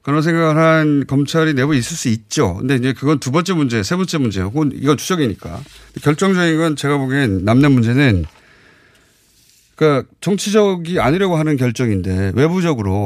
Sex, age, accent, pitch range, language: male, 30-49, native, 115-175 Hz, Korean